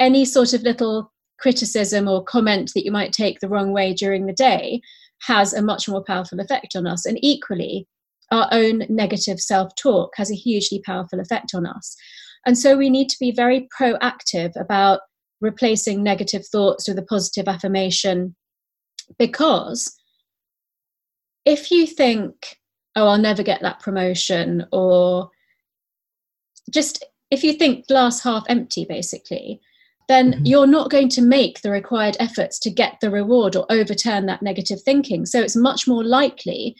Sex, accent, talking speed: female, British, 155 wpm